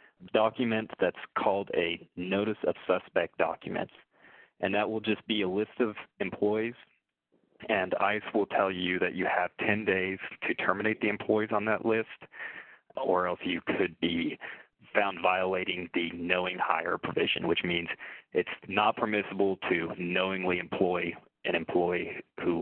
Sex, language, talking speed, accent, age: male, English, 150 wpm, American, 30-49